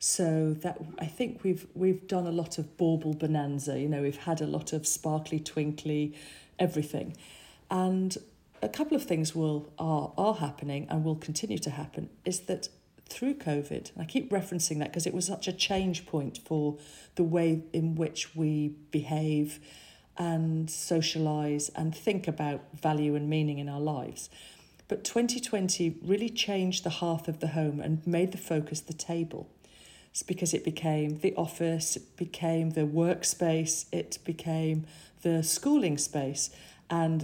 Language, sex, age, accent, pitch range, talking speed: English, female, 40-59, British, 150-185 Hz, 165 wpm